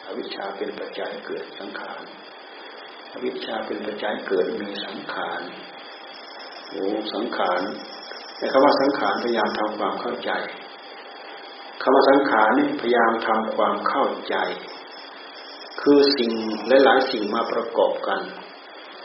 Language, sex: Thai, male